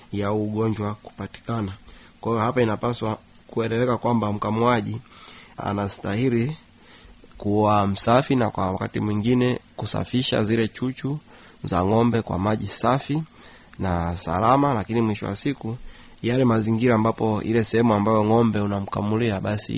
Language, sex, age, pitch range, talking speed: Swahili, male, 30-49, 100-115 Hz, 120 wpm